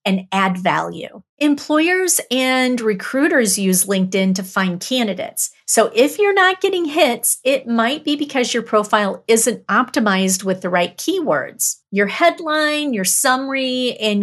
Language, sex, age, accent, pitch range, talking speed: English, female, 40-59, American, 195-270 Hz, 145 wpm